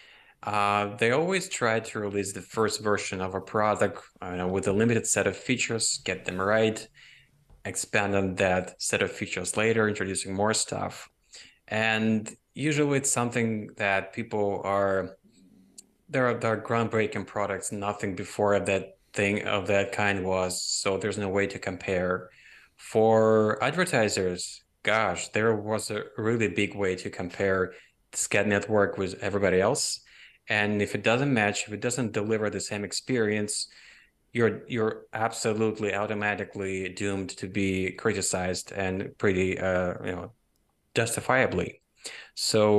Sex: male